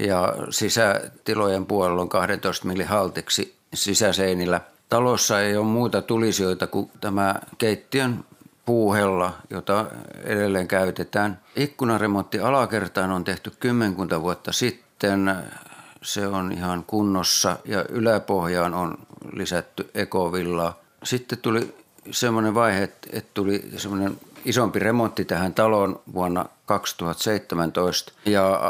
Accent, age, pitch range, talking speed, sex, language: native, 50-69, 85-105 Hz, 105 wpm, male, Finnish